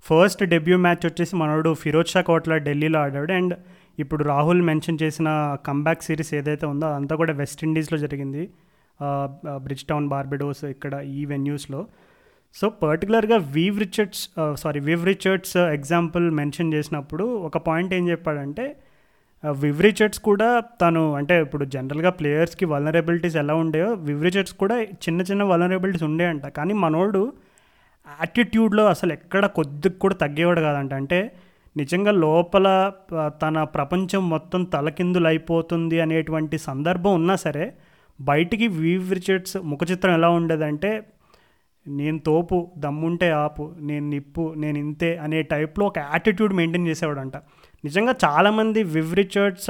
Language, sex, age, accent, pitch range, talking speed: Telugu, male, 30-49, native, 150-185 Hz, 125 wpm